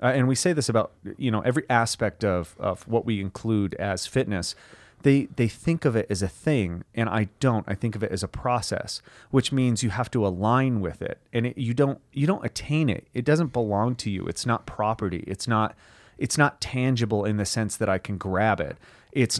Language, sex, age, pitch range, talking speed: English, male, 30-49, 100-125 Hz, 225 wpm